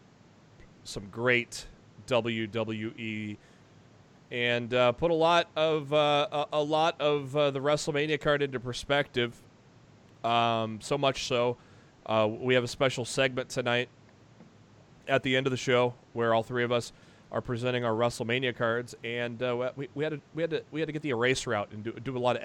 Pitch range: 115-135 Hz